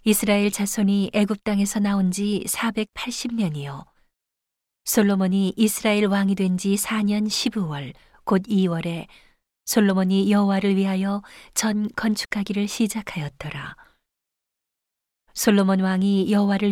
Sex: female